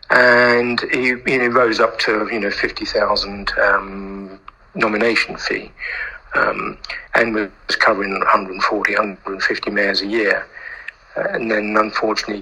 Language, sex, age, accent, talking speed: English, male, 50-69, British, 120 wpm